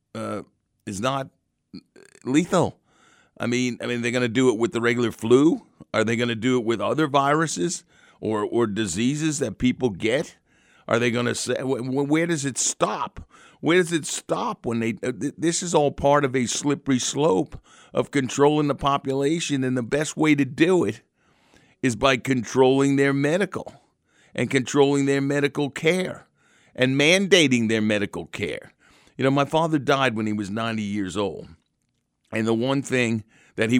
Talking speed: 175 wpm